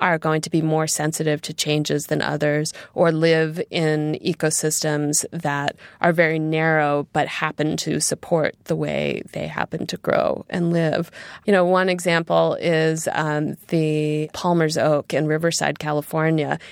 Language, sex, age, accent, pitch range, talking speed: English, female, 20-39, American, 160-195 Hz, 150 wpm